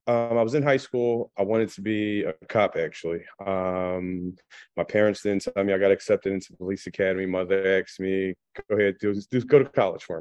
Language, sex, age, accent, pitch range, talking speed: English, male, 30-49, American, 95-110 Hz, 215 wpm